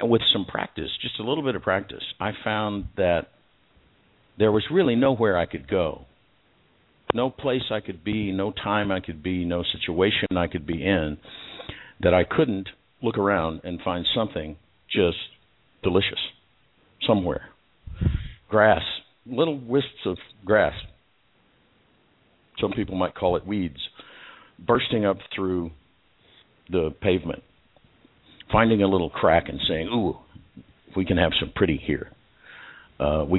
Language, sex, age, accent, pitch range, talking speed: English, male, 60-79, American, 85-105 Hz, 140 wpm